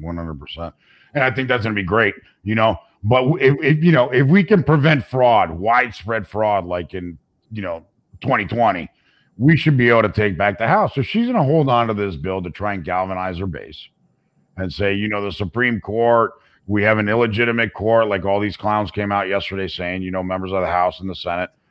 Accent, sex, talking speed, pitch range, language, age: American, male, 225 wpm, 95-115 Hz, English, 50-69